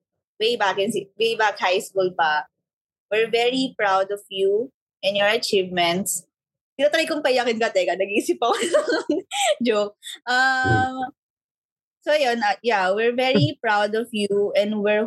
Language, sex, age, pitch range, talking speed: Filipino, female, 20-39, 190-250 Hz, 145 wpm